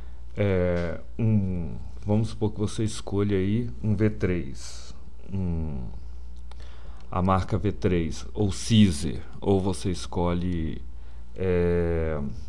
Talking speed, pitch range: 95 wpm, 65-100 Hz